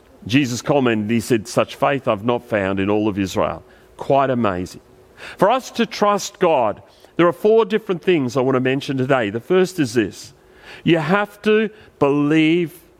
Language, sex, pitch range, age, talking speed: English, male, 170-220 Hz, 40-59, 175 wpm